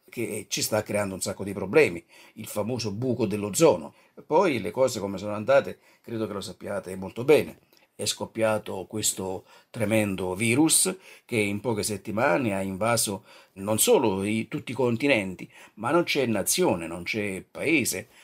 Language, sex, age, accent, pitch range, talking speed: Italian, male, 50-69, native, 105-125 Hz, 155 wpm